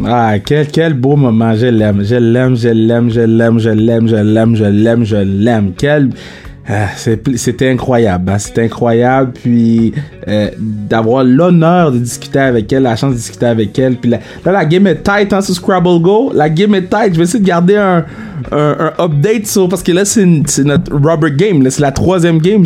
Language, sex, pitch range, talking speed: French, male, 125-175 Hz, 220 wpm